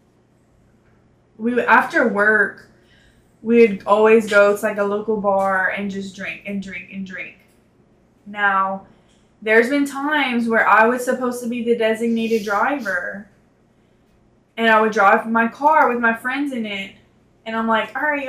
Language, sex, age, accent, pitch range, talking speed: English, female, 10-29, American, 210-245 Hz, 160 wpm